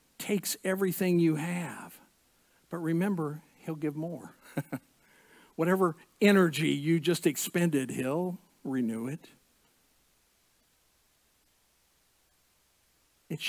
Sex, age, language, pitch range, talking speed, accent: male, 50-69, English, 175-210 Hz, 80 wpm, American